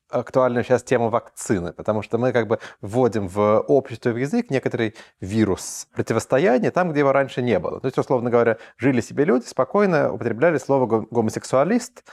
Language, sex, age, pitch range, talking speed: Russian, male, 30-49, 105-130 Hz, 170 wpm